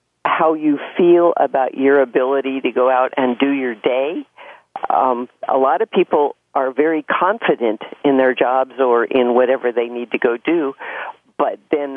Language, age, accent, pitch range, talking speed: English, 50-69, American, 130-180 Hz, 170 wpm